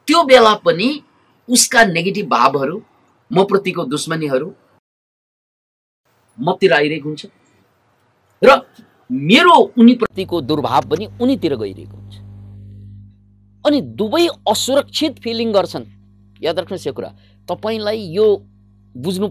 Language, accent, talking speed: English, Indian, 110 wpm